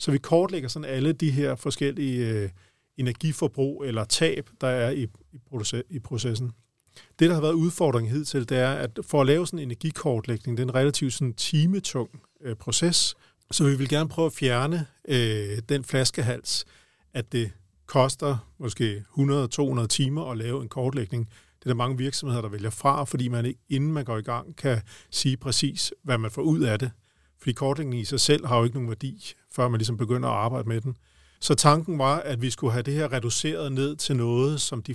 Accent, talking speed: native, 190 wpm